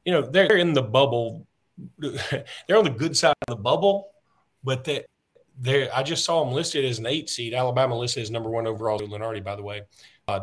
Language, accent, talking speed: English, American, 205 wpm